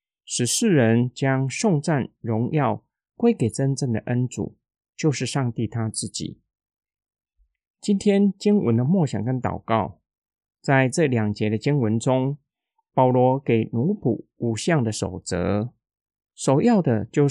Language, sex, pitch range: Chinese, male, 115-160 Hz